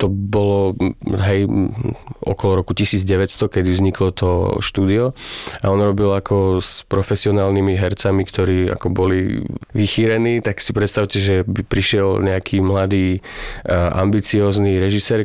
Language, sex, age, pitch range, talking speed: Slovak, male, 20-39, 95-110 Hz, 120 wpm